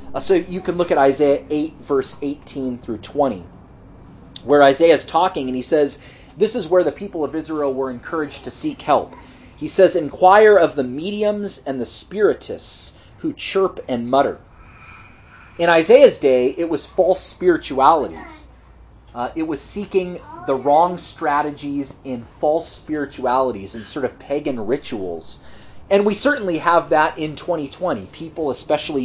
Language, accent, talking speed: English, American, 155 wpm